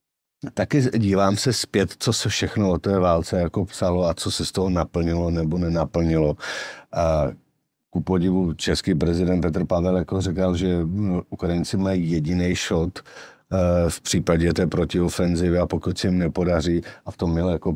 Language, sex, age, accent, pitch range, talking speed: Czech, male, 60-79, native, 85-90 Hz, 160 wpm